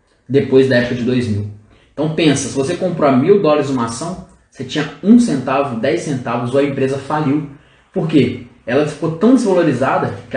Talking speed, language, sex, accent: 185 wpm, Portuguese, male, Brazilian